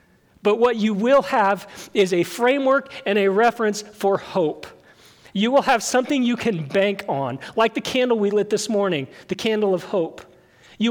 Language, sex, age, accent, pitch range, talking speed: English, male, 40-59, American, 180-230 Hz, 180 wpm